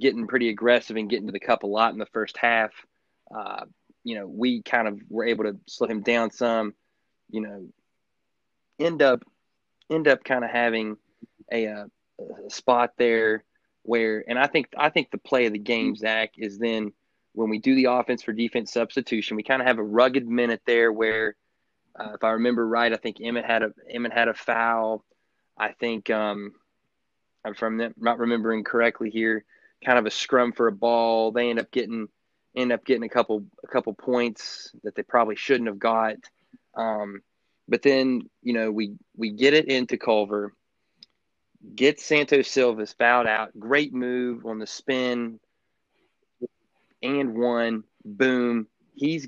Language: English